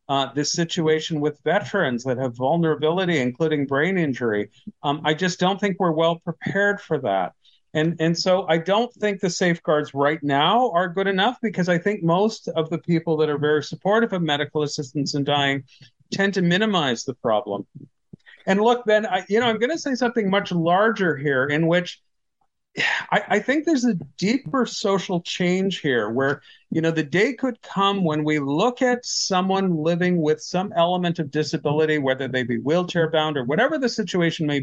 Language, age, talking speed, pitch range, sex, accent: English, 40-59, 185 wpm, 145-195 Hz, male, American